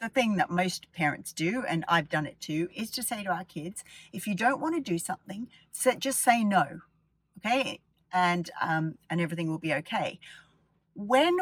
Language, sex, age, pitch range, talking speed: English, female, 40-59, 165-225 Hz, 190 wpm